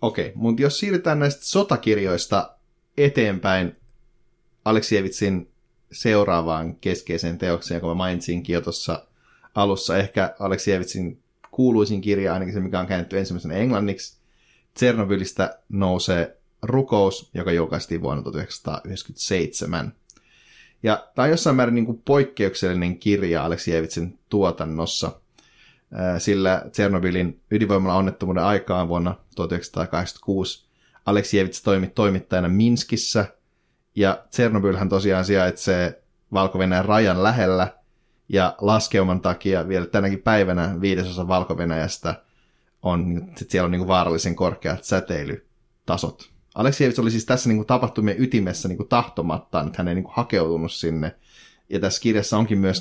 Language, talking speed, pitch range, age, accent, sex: Finnish, 110 wpm, 90-110 Hz, 30-49, native, male